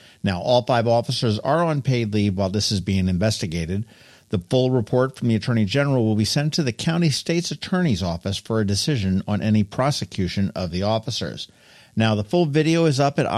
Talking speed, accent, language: 200 wpm, American, English